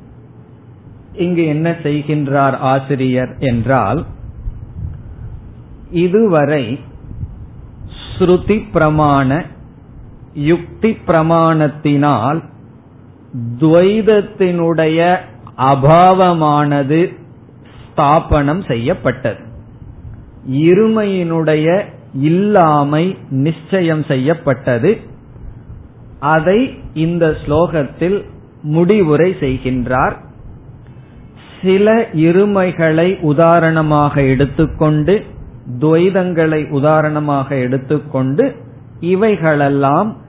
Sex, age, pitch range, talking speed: male, 50-69, 130-165 Hz, 50 wpm